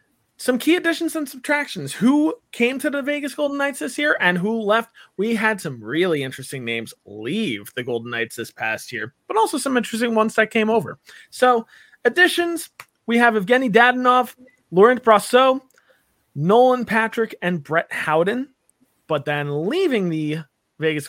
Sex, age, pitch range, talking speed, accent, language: male, 20-39, 165-240 Hz, 160 wpm, American, English